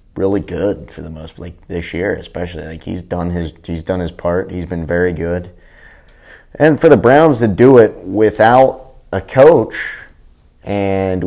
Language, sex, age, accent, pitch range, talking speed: English, male, 30-49, American, 85-110 Hz, 170 wpm